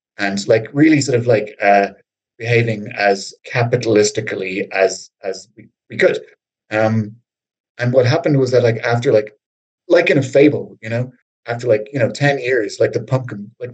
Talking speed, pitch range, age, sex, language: 175 wpm, 105-125 Hz, 30-49, male, English